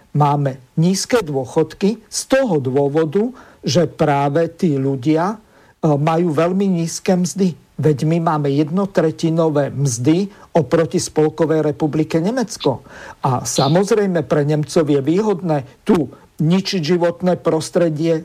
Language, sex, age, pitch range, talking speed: Slovak, male, 50-69, 155-180 Hz, 110 wpm